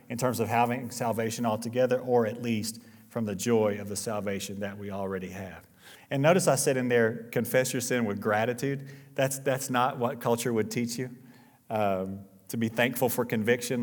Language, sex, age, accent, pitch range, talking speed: English, male, 40-59, American, 110-140 Hz, 190 wpm